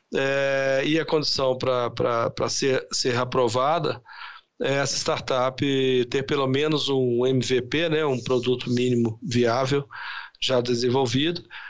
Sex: male